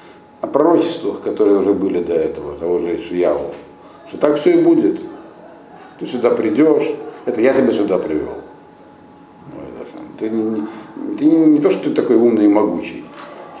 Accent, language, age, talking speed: native, Russian, 50-69, 160 wpm